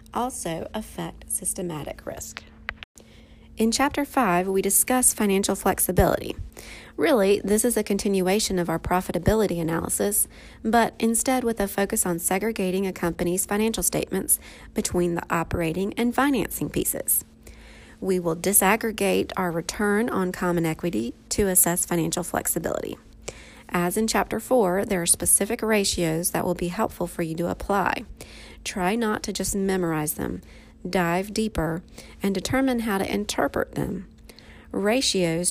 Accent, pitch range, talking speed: American, 175-215 Hz, 135 wpm